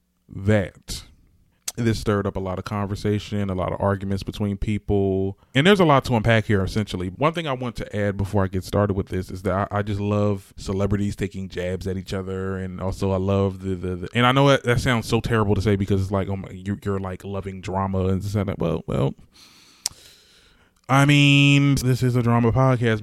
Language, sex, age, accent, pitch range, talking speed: English, male, 20-39, American, 95-115 Hz, 220 wpm